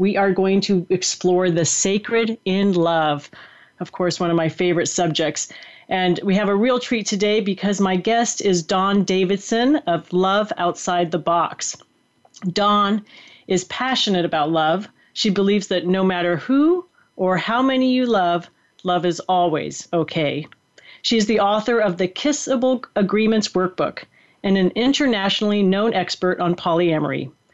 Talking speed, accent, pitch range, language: 155 wpm, American, 180-220 Hz, English